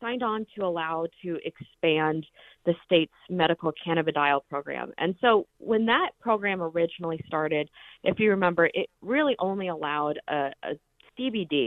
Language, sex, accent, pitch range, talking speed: English, female, American, 150-195 Hz, 135 wpm